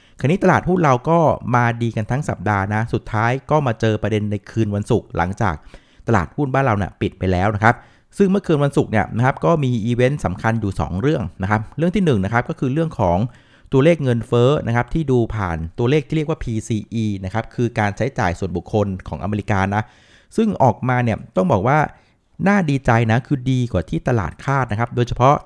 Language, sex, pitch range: Thai, male, 105-135 Hz